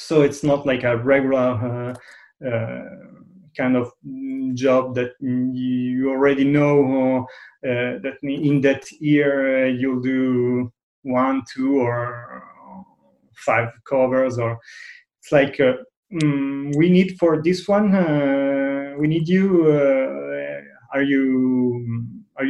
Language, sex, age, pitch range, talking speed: English, male, 30-49, 120-145 Hz, 120 wpm